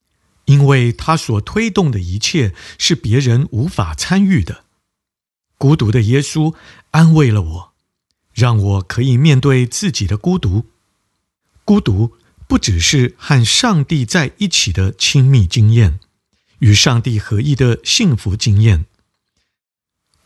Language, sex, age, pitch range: Chinese, male, 50-69, 100-140 Hz